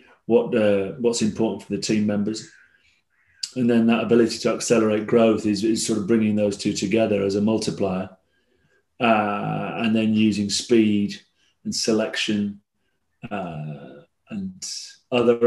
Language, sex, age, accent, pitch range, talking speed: English, male, 30-49, British, 105-120 Hz, 140 wpm